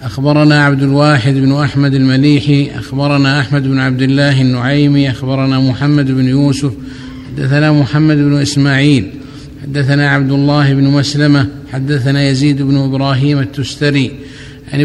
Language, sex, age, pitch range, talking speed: Arabic, male, 50-69, 135-145 Hz, 125 wpm